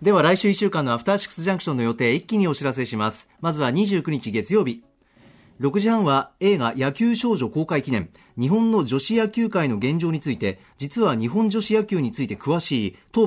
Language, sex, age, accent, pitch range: Japanese, male, 40-59, native, 135-210 Hz